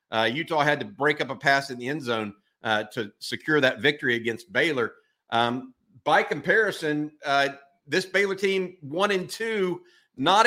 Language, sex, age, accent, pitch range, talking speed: English, male, 50-69, American, 135-175 Hz, 170 wpm